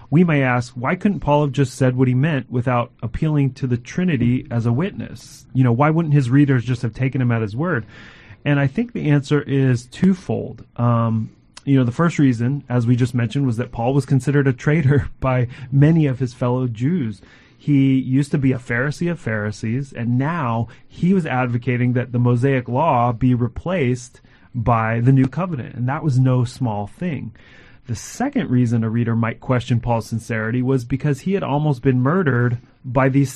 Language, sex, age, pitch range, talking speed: English, male, 30-49, 120-140 Hz, 200 wpm